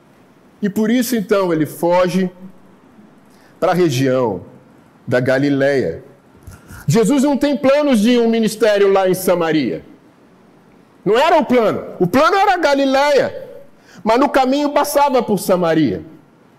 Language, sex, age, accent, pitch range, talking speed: Portuguese, male, 50-69, Brazilian, 205-250 Hz, 130 wpm